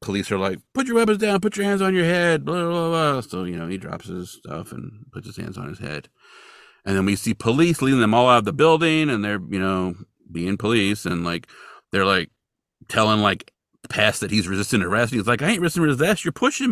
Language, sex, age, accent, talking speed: English, male, 40-59, American, 240 wpm